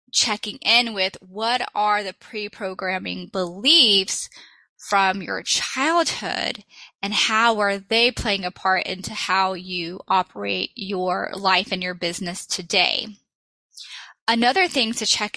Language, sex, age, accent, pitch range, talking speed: English, female, 10-29, American, 190-235 Hz, 125 wpm